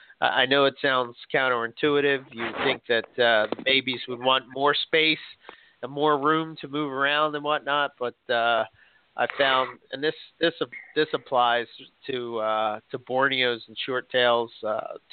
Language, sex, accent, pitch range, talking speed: English, male, American, 120-145 Hz, 155 wpm